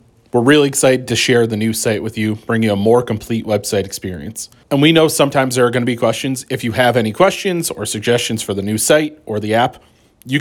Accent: American